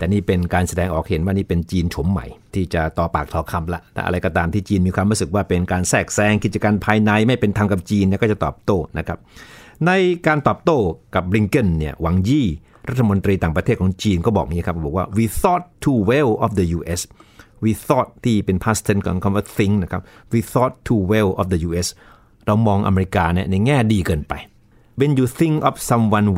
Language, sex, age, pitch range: Thai, male, 60-79, 90-115 Hz